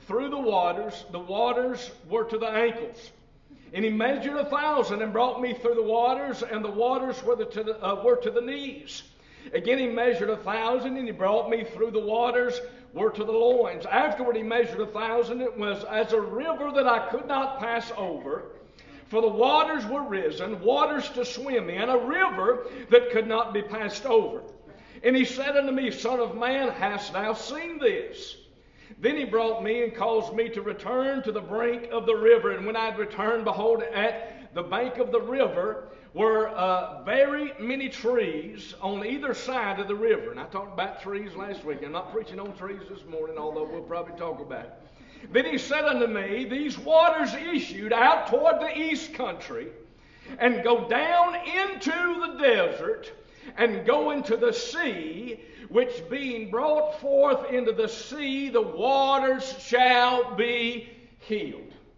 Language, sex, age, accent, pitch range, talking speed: English, male, 60-79, American, 225-280 Hz, 180 wpm